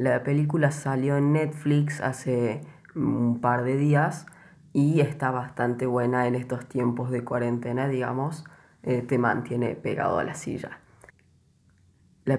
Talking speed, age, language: 135 wpm, 10-29, Spanish